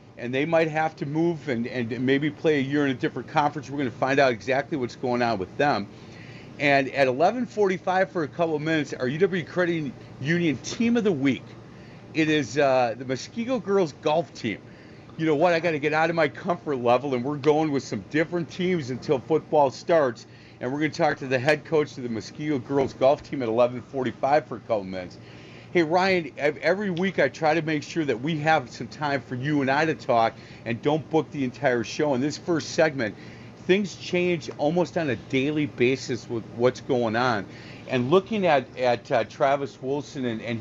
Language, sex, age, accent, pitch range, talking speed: English, male, 40-59, American, 125-160 Hz, 215 wpm